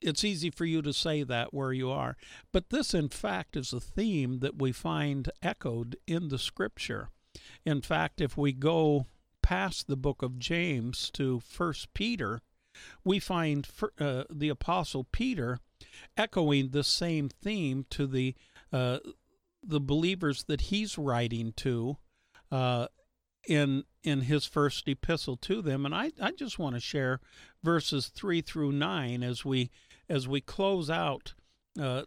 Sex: male